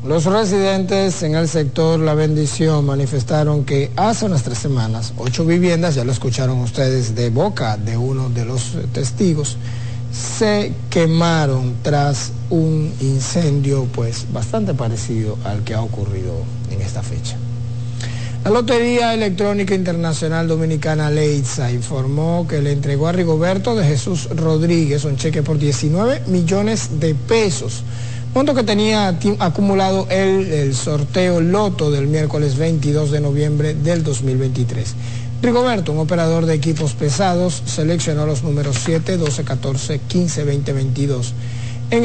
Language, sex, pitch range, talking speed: Spanish, male, 120-165 Hz, 135 wpm